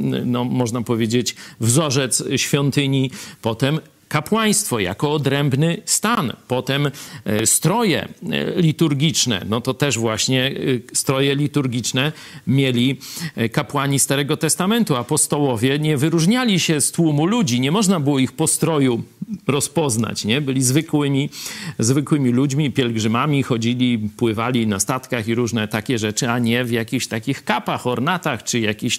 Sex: male